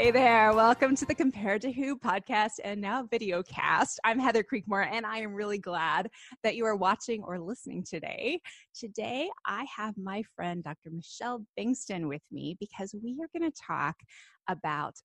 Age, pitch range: 20-39, 185-260 Hz